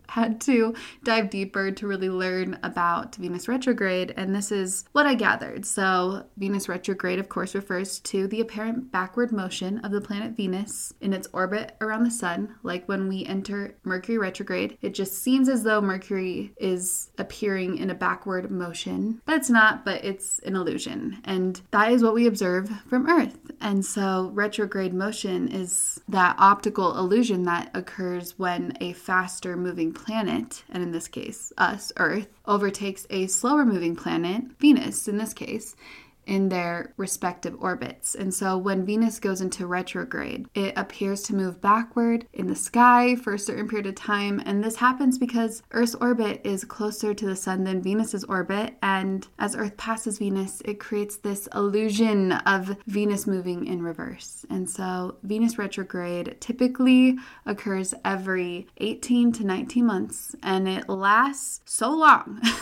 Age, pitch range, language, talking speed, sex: 20-39, 190-230 Hz, English, 160 wpm, female